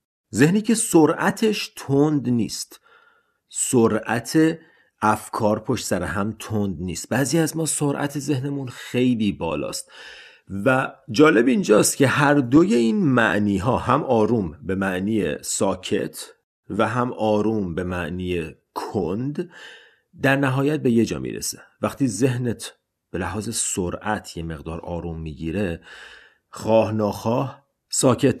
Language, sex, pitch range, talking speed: Persian, male, 105-165 Hz, 120 wpm